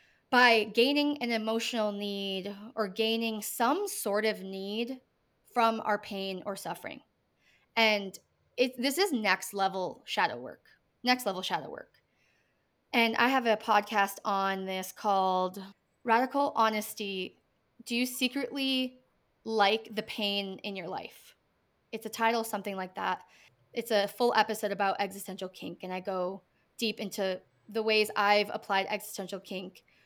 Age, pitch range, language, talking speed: 20-39, 200-240 Hz, English, 140 wpm